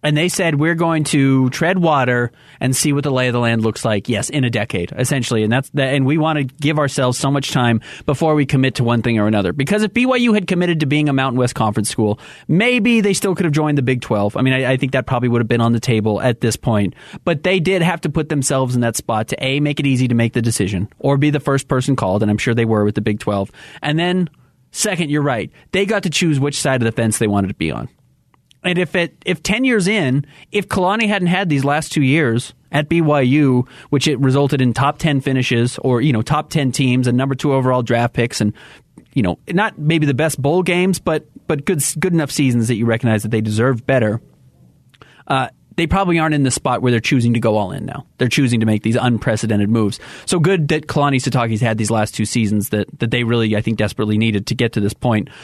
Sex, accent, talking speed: male, American, 255 wpm